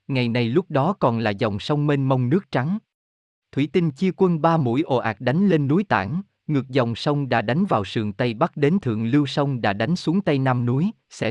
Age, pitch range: 20-39, 115-160 Hz